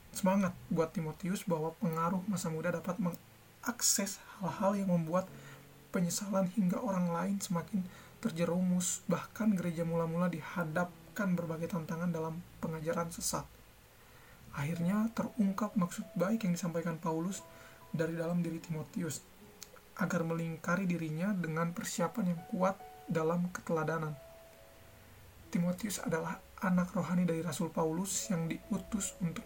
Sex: male